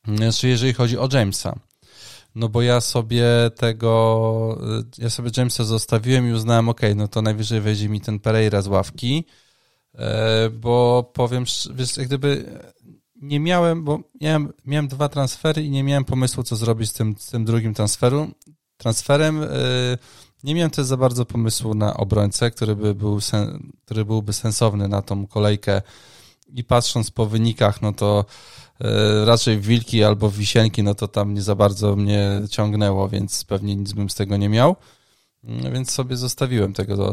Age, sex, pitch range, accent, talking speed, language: 20-39, male, 105-125 Hz, native, 150 wpm, Polish